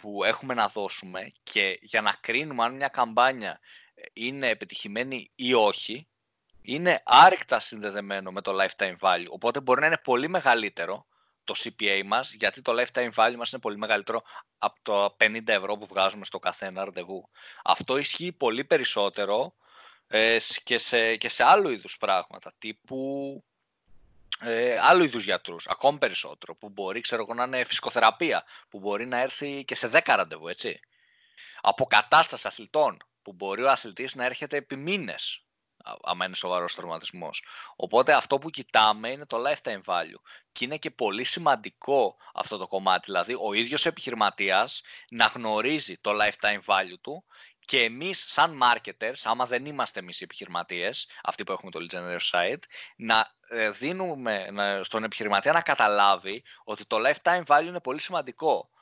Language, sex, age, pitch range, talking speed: Greek, male, 20-39, 105-145 Hz, 155 wpm